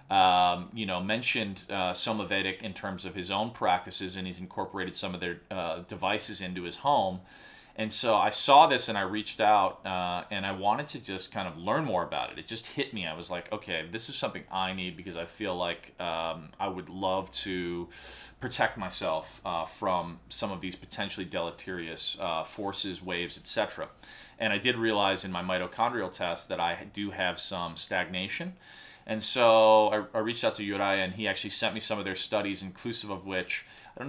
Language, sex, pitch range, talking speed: English, male, 90-105 Hz, 200 wpm